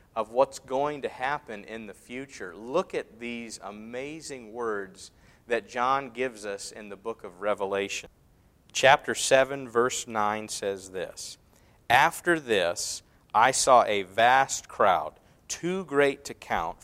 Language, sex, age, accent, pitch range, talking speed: English, male, 50-69, American, 100-130 Hz, 140 wpm